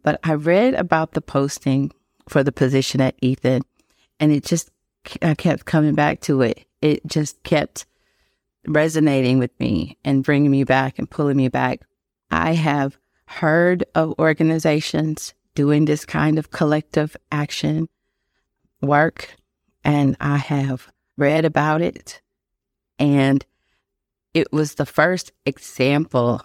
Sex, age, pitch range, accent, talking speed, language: female, 40-59, 135-160 Hz, American, 130 wpm, English